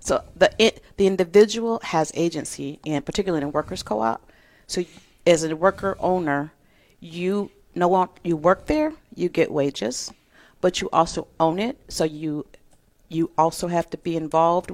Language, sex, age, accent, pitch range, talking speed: English, female, 40-59, American, 155-195 Hz, 160 wpm